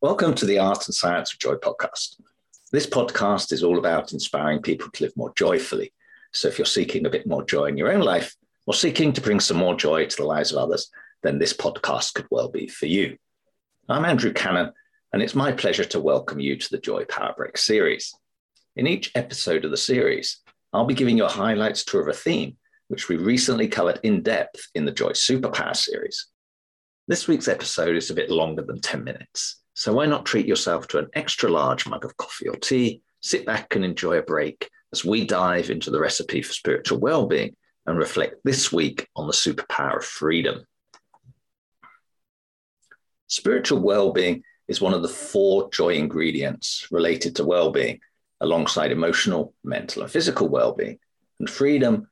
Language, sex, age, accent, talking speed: English, male, 50-69, British, 190 wpm